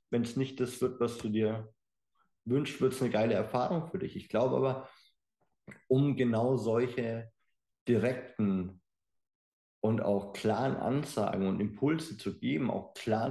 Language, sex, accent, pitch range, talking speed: German, male, German, 100-125 Hz, 150 wpm